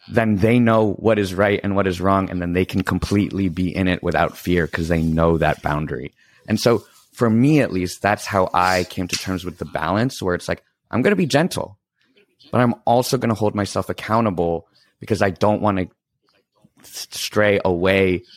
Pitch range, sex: 90-110 Hz, male